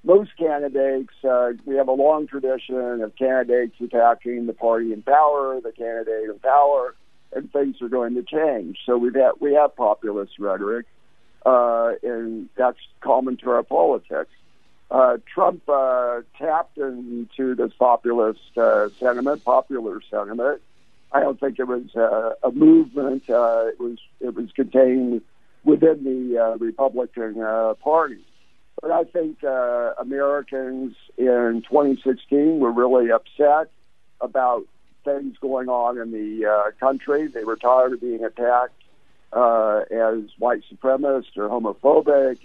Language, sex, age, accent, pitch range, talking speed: English, male, 60-79, American, 120-140 Hz, 140 wpm